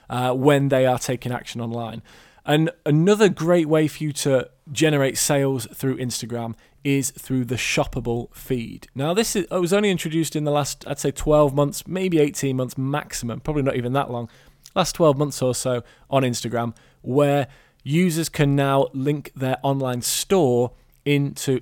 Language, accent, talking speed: English, British, 165 wpm